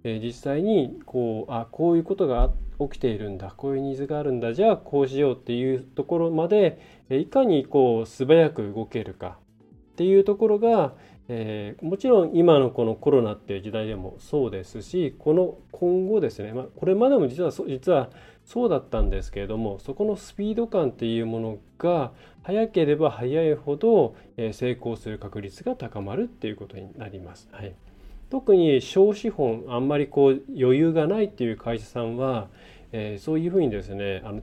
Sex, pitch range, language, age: male, 115-170 Hz, Japanese, 20-39